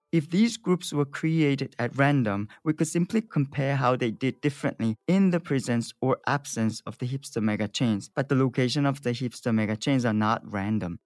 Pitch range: 115-145 Hz